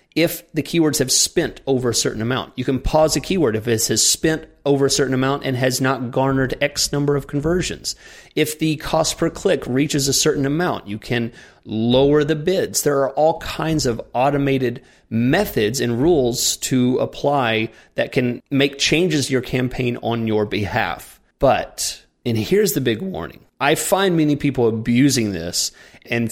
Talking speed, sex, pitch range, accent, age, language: 180 wpm, male, 105-140 Hz, American, 30-49, English